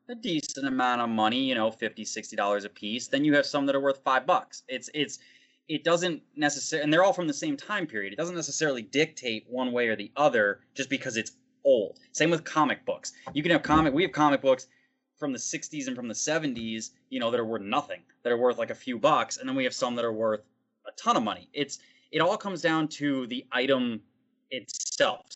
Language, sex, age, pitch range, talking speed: English, male, 20-39, 130-215 Hz, 235 wpm